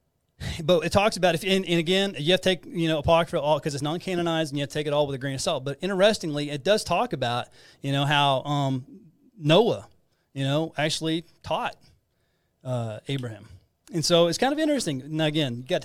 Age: 30-49